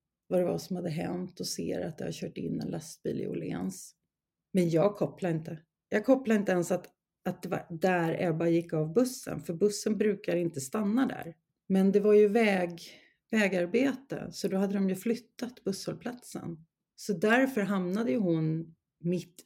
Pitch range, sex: 165-210 Hz, female